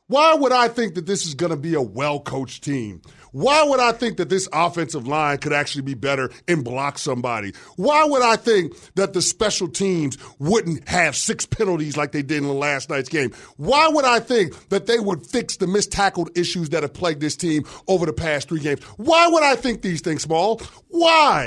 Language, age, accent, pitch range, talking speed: English, 30-49, American, 150-230 Hz, 210 wpm